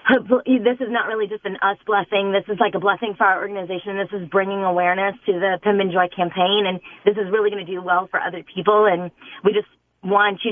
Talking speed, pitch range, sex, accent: 235 wpm, 195-240 Hz, female, American